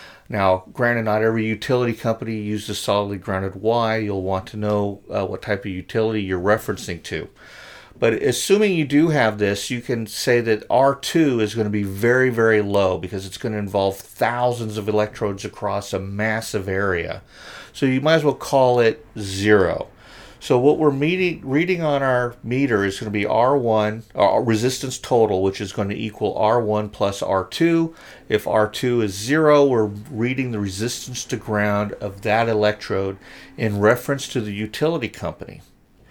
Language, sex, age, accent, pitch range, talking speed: English, male, 40-59, American, 105-130 Hz, 175 wpm